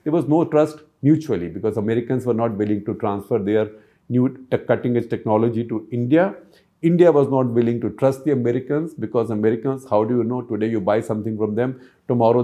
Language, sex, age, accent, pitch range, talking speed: English, male, 50-69, Indian, 110-145 Hz, 190 wpm